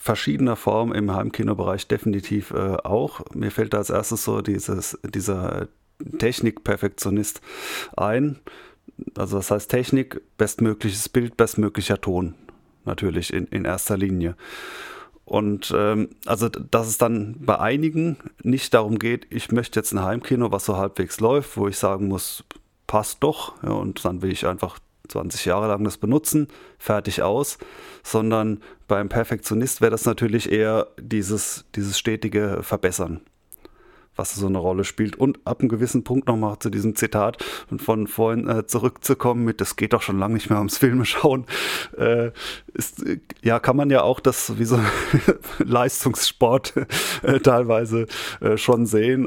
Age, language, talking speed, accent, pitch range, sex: 30-49, German, 150 wpm, German, 100-120 Hz, male